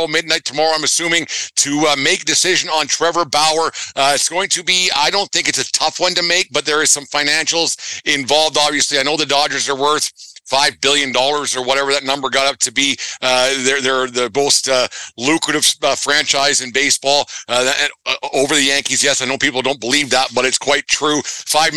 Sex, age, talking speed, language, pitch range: male, 50-69, 215 wpm, English, 135-155 Hz